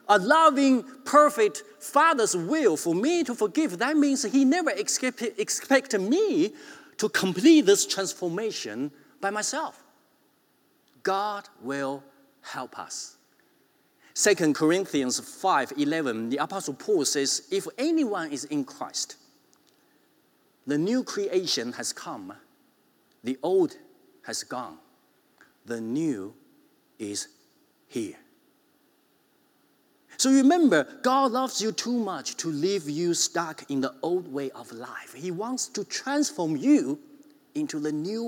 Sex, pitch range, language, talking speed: male, 195-320 Hz, English, 120 wpm